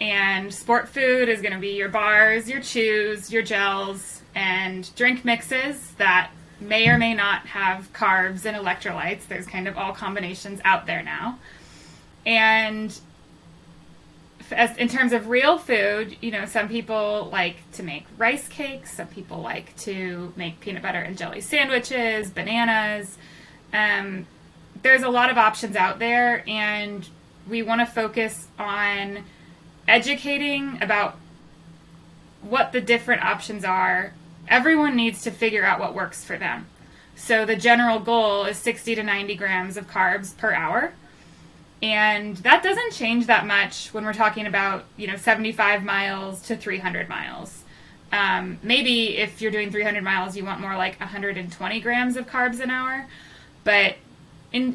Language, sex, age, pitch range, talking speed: English, female, 20-39, 190-235 Hz, 150 wpm